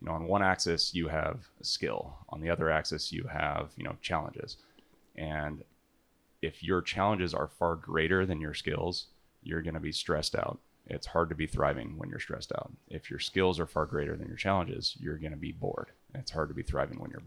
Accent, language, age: American, English, 30-49